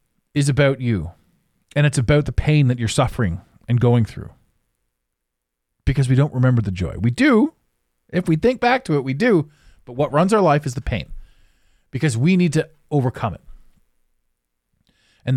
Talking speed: 175 wpm